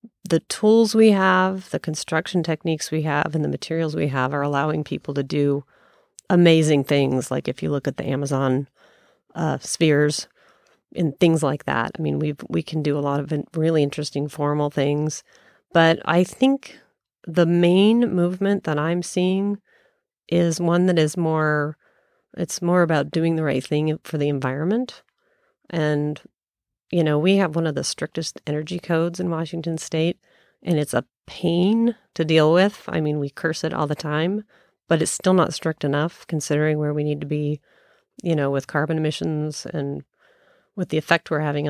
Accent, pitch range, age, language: American, 145-175 Hz, 40-59, English